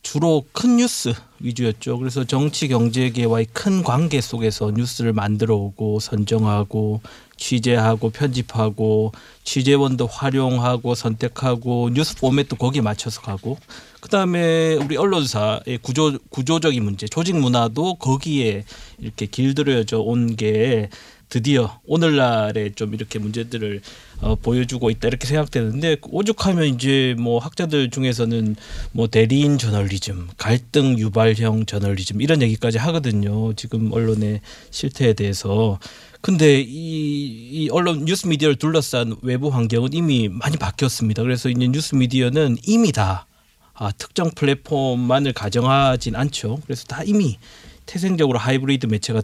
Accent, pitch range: native, 110-145 Hz